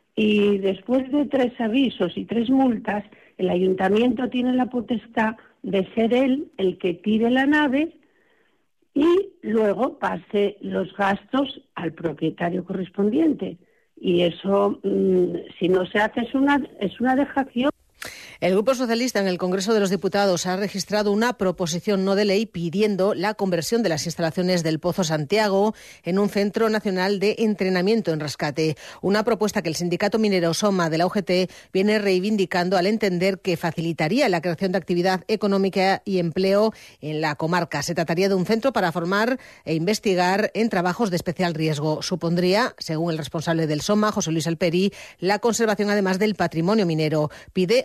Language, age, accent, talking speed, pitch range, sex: Spanish, 50-69, Spanish, 160 wpm, 180-225 Hz, female